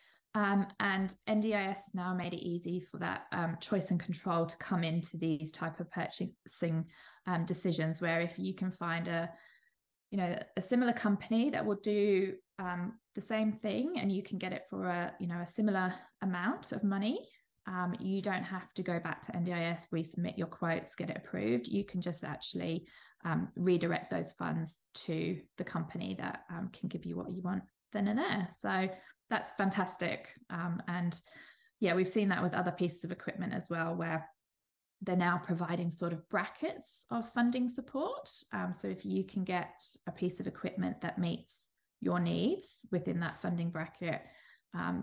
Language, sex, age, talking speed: English, female, 20-39, 180 wpm